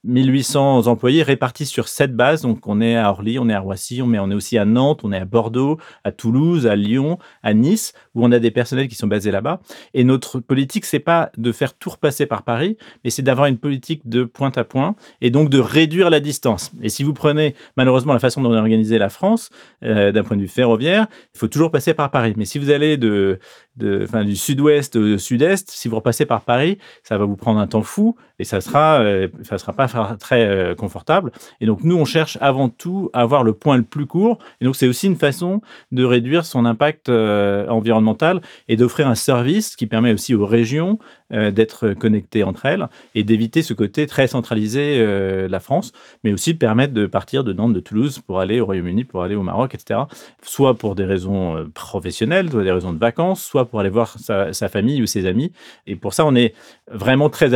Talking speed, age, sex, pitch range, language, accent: 225 wpm, 30-49, male, 110-145 Hz, French, French